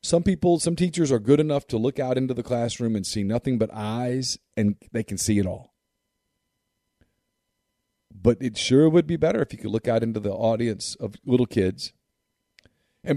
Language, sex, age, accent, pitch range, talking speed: English, male, 40-59, American, 105-130 Hz, 190 wpm